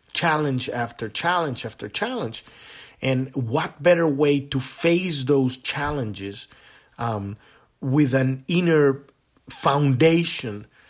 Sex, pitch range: male, 120-165 Hz